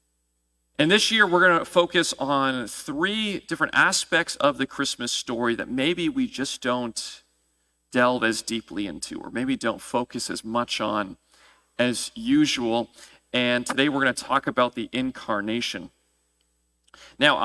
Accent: American